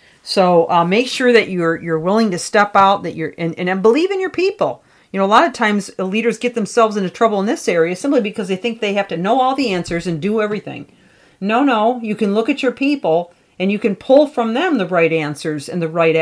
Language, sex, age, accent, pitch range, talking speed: English, female, 40-59, American, 175-235 Hz, 250 wpm